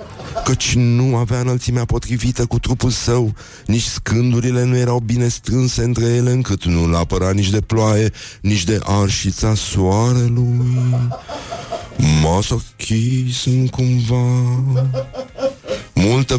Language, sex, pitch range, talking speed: Romanian, male, 105-135 Hz, 105 wpm